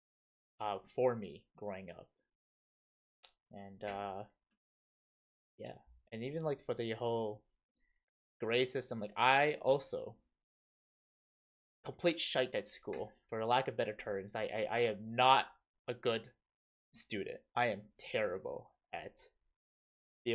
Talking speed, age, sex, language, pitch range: 125 wpm, 20-39, male, English, 105-150 Hz